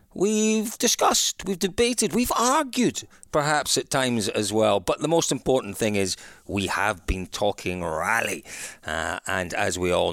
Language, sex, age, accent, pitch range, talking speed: English, male, 40-59, British, 100-150 Hz, 160 wpm